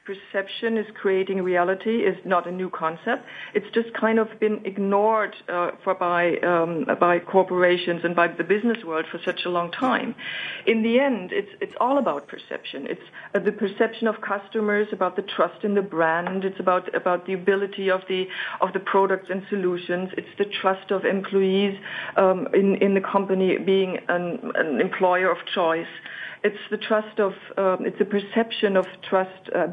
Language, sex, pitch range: English, female, 185-220 Hz